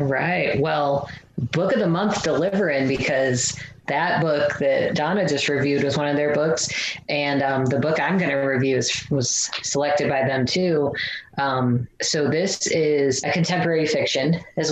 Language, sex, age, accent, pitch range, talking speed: English, female, 20-39, American, 135-160 Hz, 165 wpm